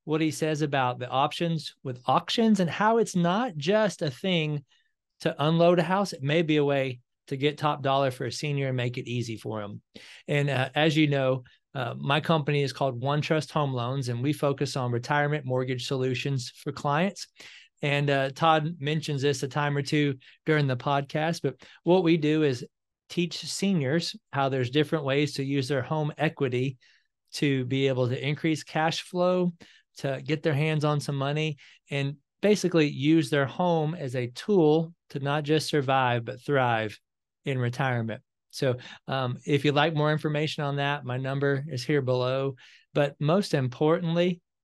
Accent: American